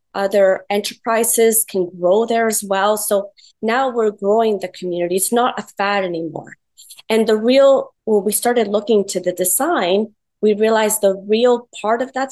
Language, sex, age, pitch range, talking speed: English, female, 30-49, 185-225 Hz, 170 wpm